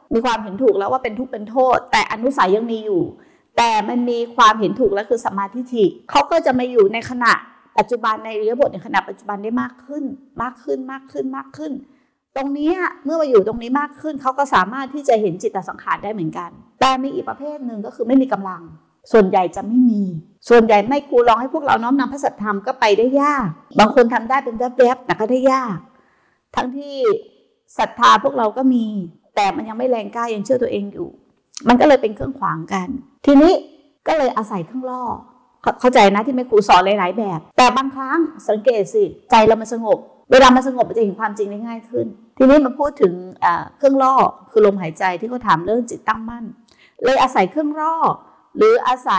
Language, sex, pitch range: Thai, female, 215-275 Hz